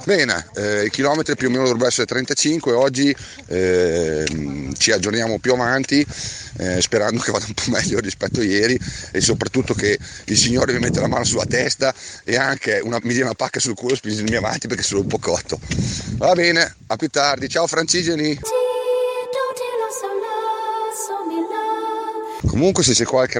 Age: 40-59